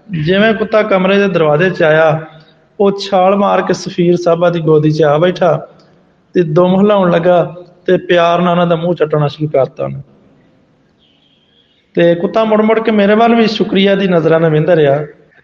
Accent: native